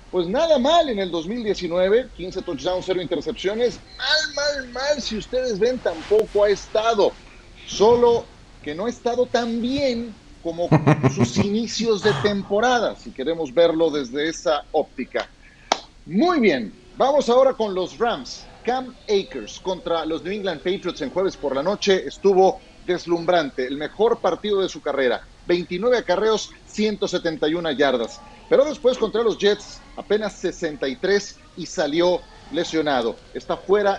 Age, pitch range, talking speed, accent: 40-59, 170-225 Hz, 140 wpm, Mexican